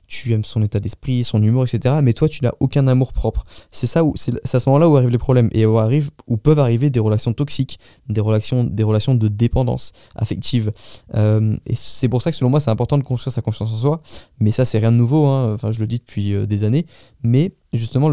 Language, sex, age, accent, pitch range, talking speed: French, male, 20-39, French, 115-135 Hz, 230 wpm